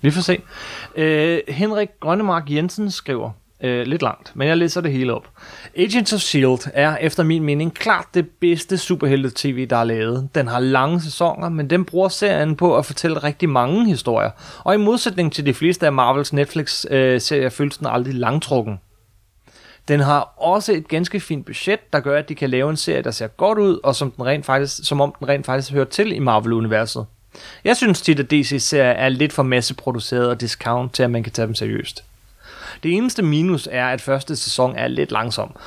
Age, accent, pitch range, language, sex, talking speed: 30-49, native, 130-165 Hz, Danish, male, 205 wpm